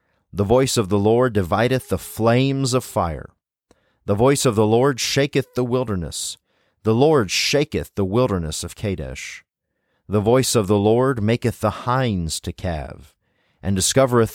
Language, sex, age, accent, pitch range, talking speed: English, male, 30-49, American, 95-125 Hz, 155 wpm